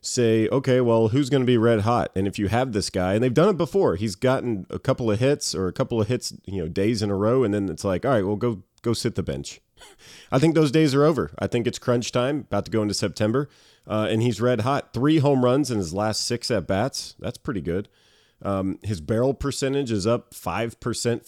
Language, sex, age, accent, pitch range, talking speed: English, male, 30-49, American, 95-120 Hz, 250 wpm